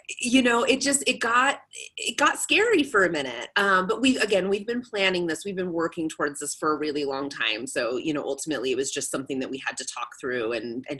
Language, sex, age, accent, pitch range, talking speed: English, female, 30-49, American, 170-245 Hz, 250 wpm